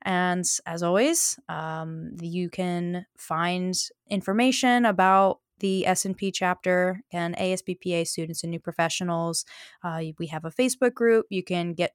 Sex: female